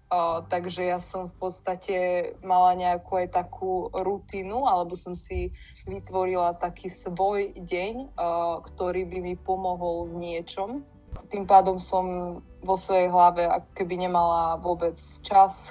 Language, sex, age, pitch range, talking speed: Slovak, female, 20-39, 175-185 Hz, 140 wpm